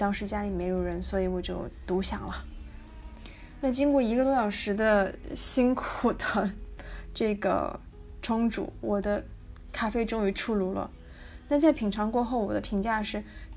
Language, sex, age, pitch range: Chinese, female, 20-39, 190-240 Hz